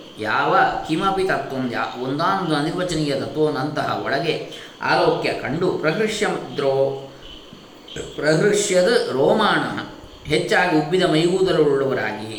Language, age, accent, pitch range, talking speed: Kannada, 20-39, native, 140-180 Hz, 80 wpm